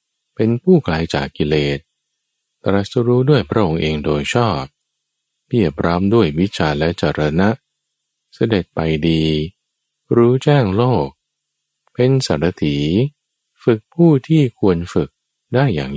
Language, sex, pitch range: Thai, male, 75-115 Hz